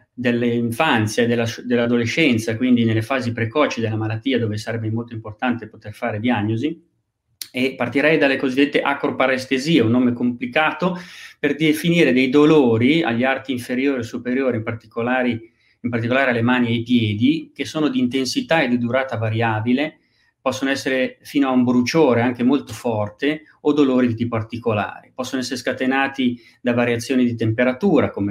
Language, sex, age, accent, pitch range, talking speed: Italian, male, 30-49, native, 115-145 Hz, 155 wpm